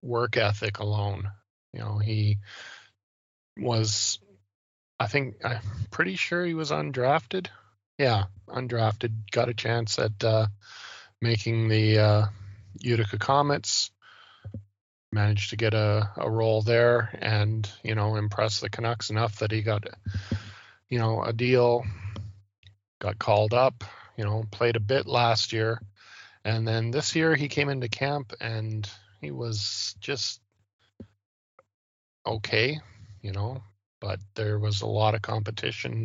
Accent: American